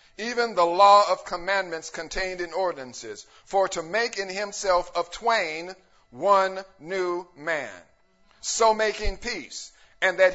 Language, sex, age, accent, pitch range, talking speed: English, male, 50-69, American, 185-240 Hz, 135 wpm